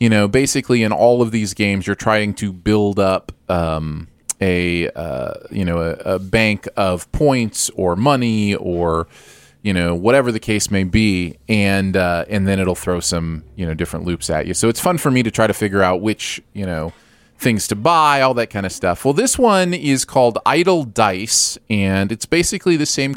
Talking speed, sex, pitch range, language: 205 wpm, male, 95-125 Hz, English